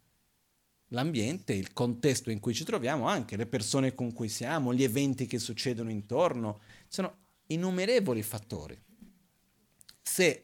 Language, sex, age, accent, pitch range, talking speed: Italian, male, 50-69, native, 110-155 Hz, 125 wpm